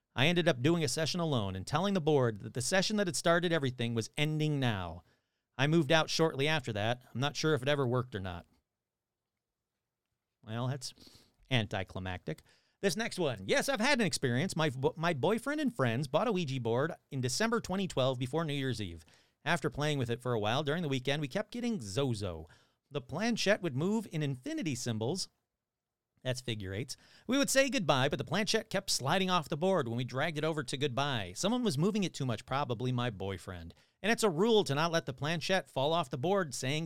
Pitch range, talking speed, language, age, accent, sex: 120-180 Hz, 210 wpm, English, 40-59, American, male